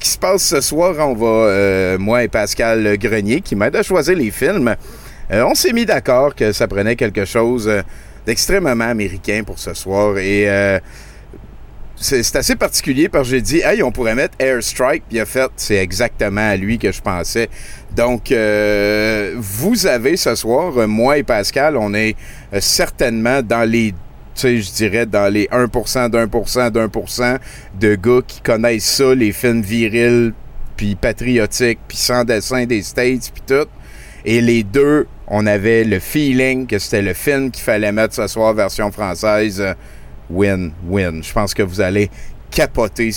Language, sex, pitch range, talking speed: French, male, 105-125 Hz, 175 wpm